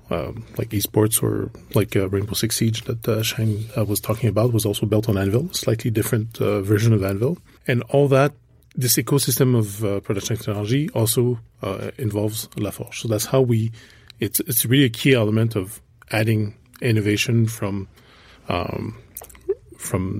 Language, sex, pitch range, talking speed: English, male, 105-120 Hz, 175 wpm